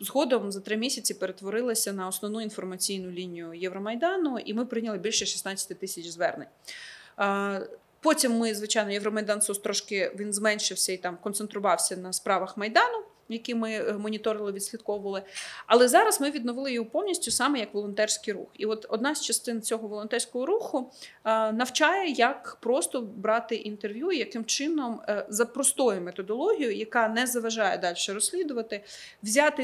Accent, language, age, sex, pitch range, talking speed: native, Ukrainian, 30-49, female, 210-275 Hz, 140 wpm